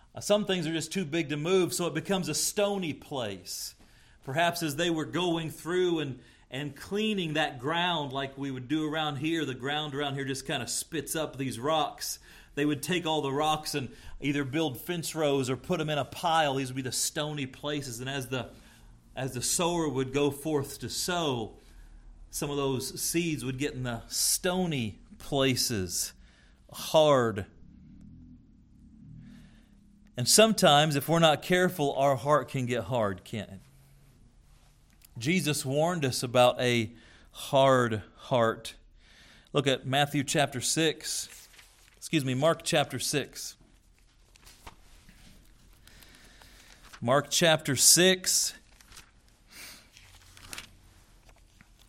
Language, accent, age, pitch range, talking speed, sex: English, American, 40-59, 125-160 Hz, 140 wpm, male